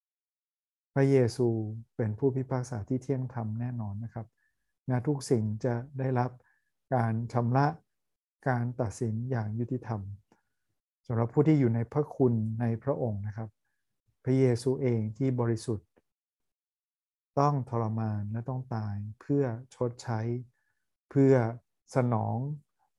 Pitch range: 110-130 Hz